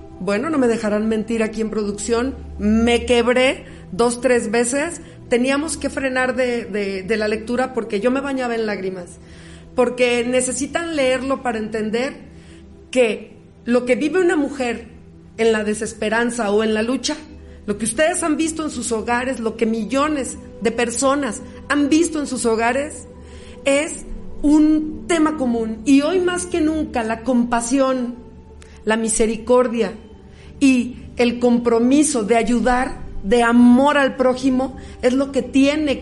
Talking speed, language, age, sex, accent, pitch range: 145 wpm, Spanish, 40-59, female, Mexican, 230-290 Hz